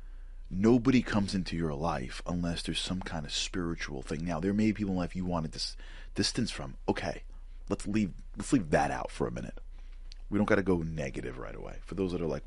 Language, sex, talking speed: English, male, 225 wpm